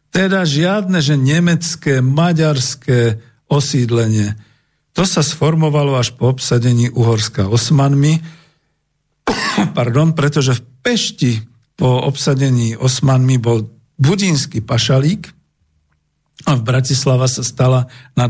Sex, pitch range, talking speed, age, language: male, 115-145 Hz, 100 wpm, 50-69, Slovak